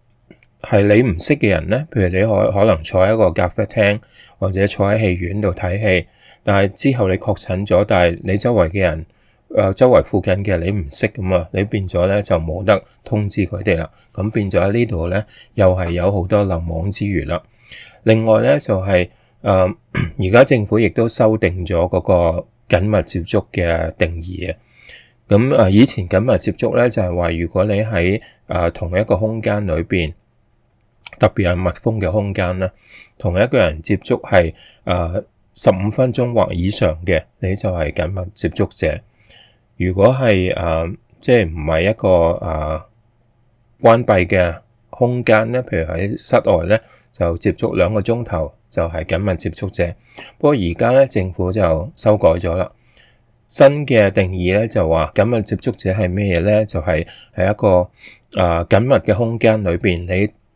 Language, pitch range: English, 90-110 Hz